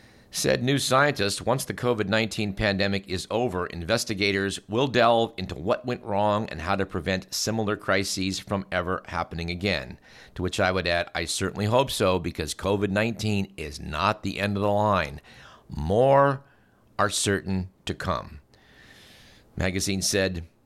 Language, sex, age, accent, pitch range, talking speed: English, male, 50-69, American, 95-120 Hz, 150 wpm